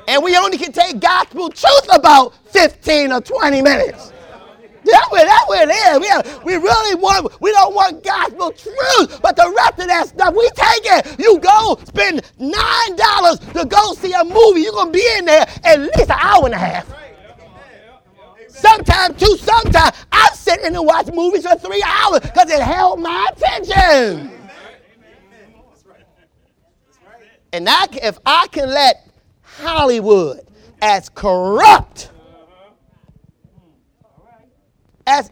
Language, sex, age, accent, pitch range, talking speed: English, male, 30-49, American, 290-390 Hz, 145 wpm